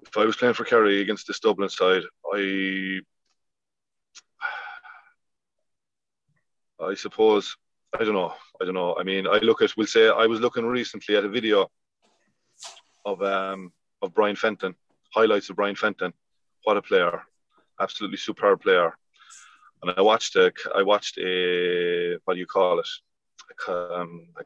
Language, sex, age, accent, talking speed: English, male, 30-49, Irish, 150 wpm